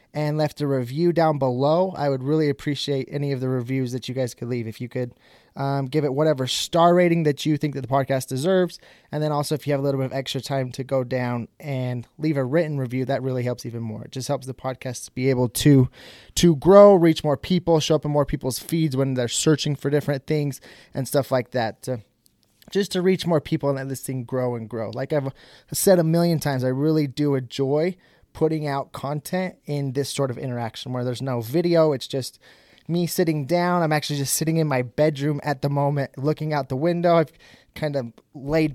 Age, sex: 20-39, male